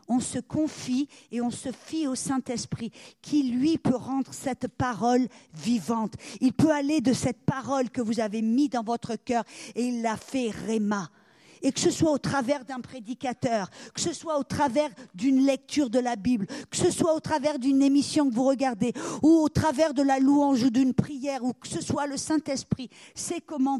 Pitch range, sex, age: 215-275 Hz, female, 50-69